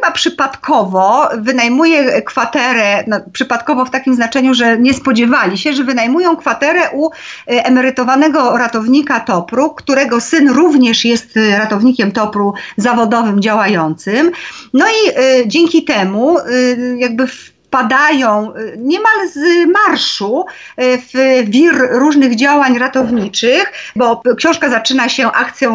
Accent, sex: native, female